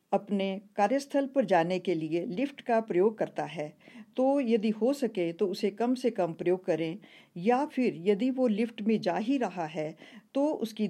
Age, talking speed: 50-69, 185 wpm